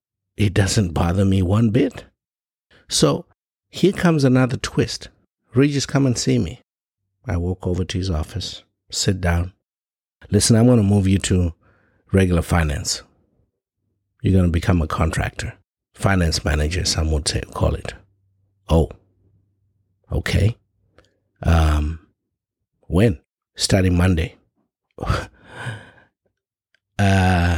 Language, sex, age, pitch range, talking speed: English, male, 60-79, 90-105 Hz, 115 wpm